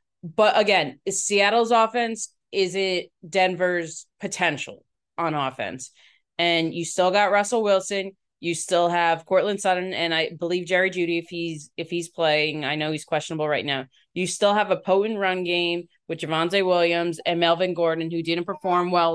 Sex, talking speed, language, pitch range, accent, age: female, 170 wpm, English, 165-200 Hz, American, 20-39